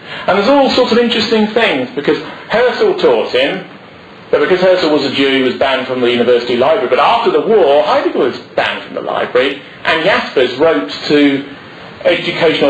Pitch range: 140-200 Hz